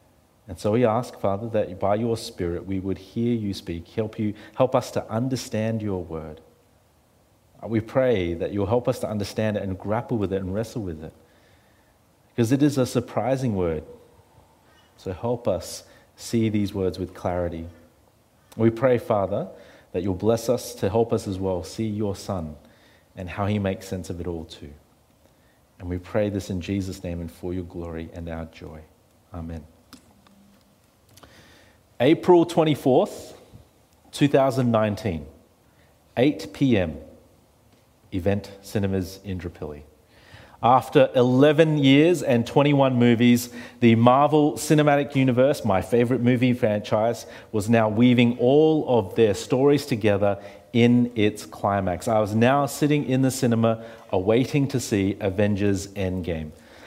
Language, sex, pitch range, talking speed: English, male, 95-125 Hz, 145 wpm